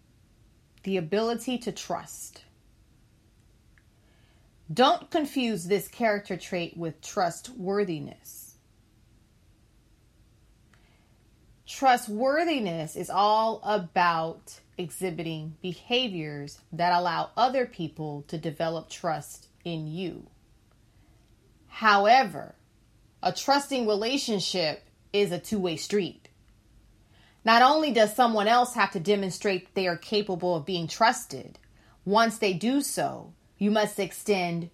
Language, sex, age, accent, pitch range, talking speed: English, female, 30-49, American, 155-225 Hz, 95 wpm